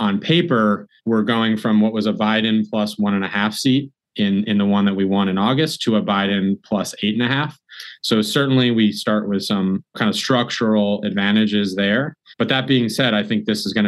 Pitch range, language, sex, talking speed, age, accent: 100-135 Hz, English, male, 225 wpm, 20-39, American